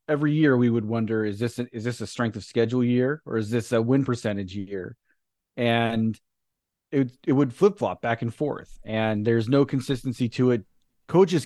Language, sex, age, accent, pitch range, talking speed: English, male, 30-49, American, 110-130 Hz, 195 wpm